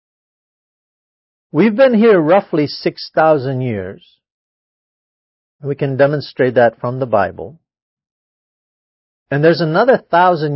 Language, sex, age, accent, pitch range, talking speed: English, male, 50-69, American, 120-165 Hz, 95 wpm